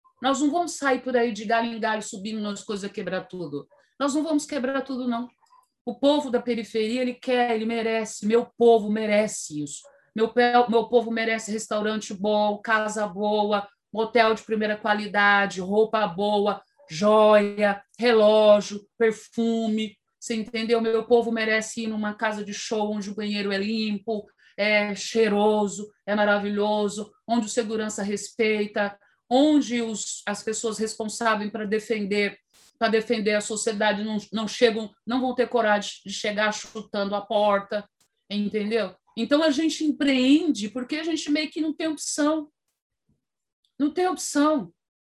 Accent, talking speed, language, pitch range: Brazilian, 145 wpm, Portuguese, 210-270 Hz